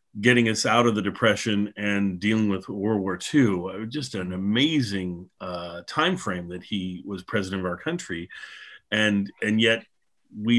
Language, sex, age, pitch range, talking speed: English, male, 40-59, 100-115 Hz, 160 wpm